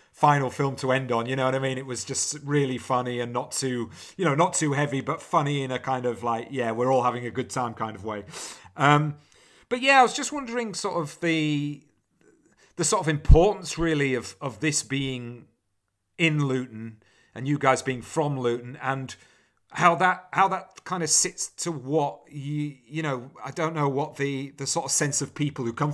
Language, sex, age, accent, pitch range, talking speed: English, male, 40-59, British, 125-150 Hz, 215 wpm